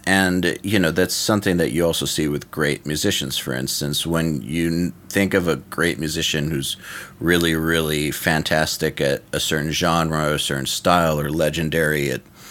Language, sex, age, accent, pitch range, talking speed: English, male, 30-49, American, 75-85 Hz, 175 wpm